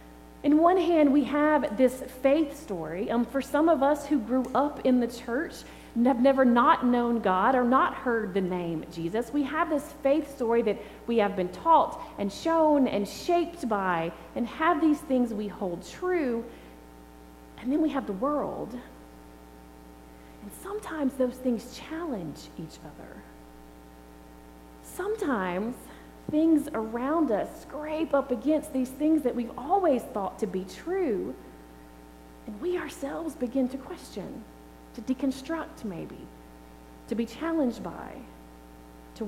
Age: 30-49